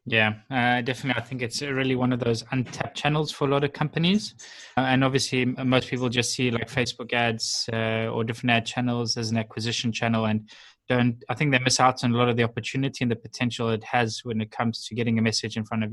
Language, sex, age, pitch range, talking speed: English, male, 20-39, 115-125 Hz, 240 wpm